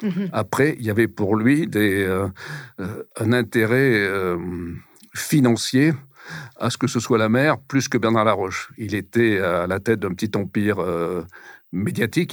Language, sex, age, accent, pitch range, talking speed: French, male, 60-79, French, 100-125 Hz, 165 wpm